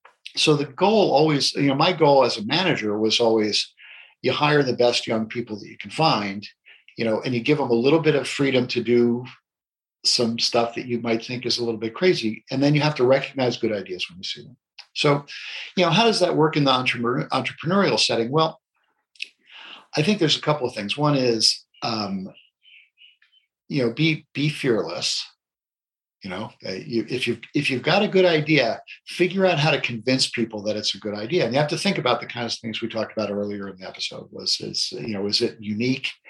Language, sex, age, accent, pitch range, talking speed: English, male, 50-69, American, 110-150 Hz, 220 wpm